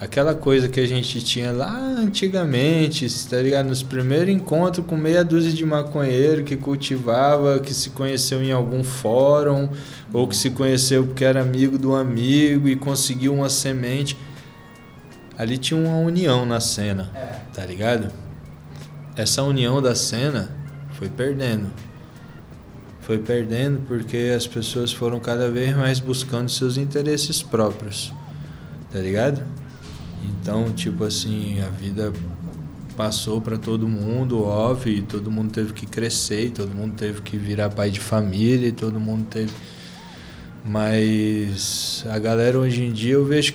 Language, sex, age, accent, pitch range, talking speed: Portuguese, male, 20-39, Brazilian, 110-140 Hz, 145 wpm